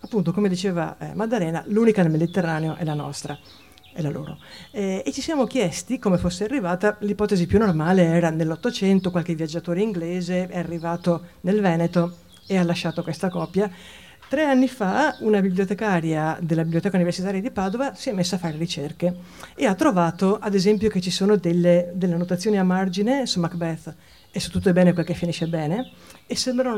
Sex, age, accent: female, 50-69, native